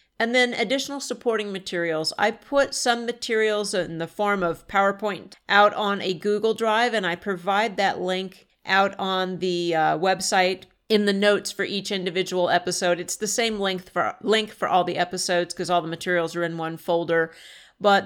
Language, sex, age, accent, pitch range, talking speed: English, female, 50-69, American, 175-205 Hz, 180 wpm